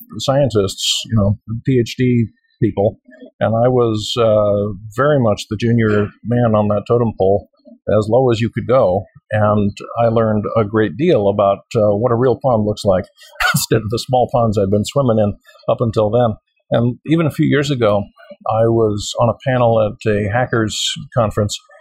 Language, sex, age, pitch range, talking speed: English, male, 50-69, 110-130 Hz, 180 wpm